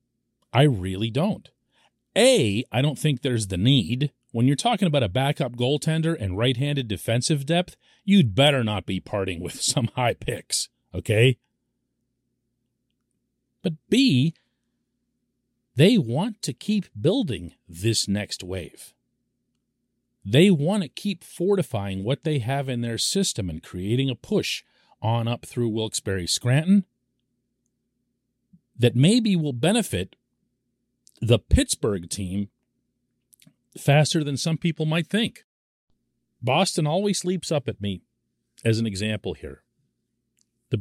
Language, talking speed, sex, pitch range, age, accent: English, 125 wpm, male, 105-145 Hz, 40-59, American